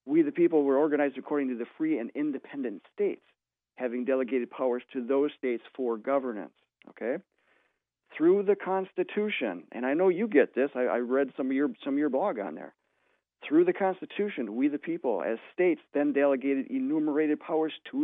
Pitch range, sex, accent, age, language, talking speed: 130-180 Hz, male, American, 40-59, English, 185 wpm